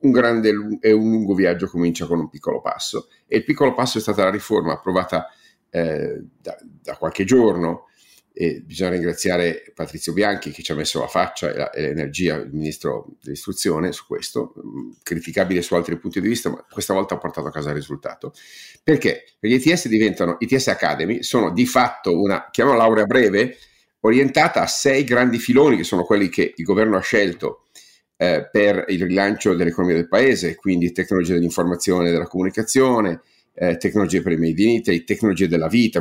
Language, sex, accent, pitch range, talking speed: Italian, male, native, 85-110 Hz, 180 wpm